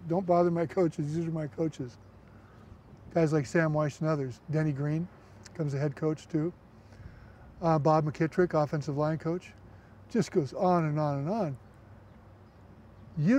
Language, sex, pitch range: English, male, 125-175 Hz